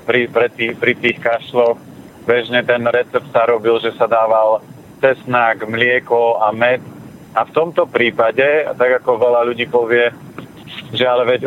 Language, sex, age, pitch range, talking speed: Slovak, male, 40-59, 115-130 Hz, 155 wpm